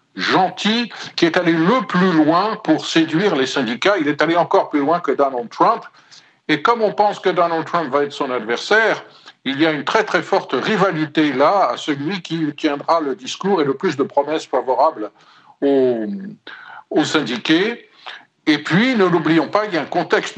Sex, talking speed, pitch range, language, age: male, 190 wpm, 135-190 Hz, French, 60-79